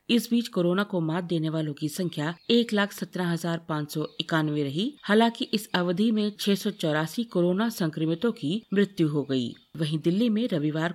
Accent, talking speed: native, 170 wpm